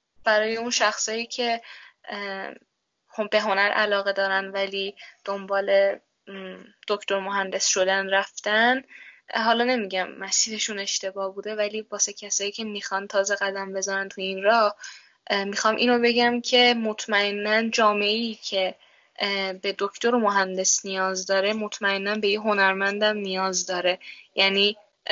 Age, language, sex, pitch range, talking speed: 10-29, Persian, female, 195-235 Hz, 115 wpm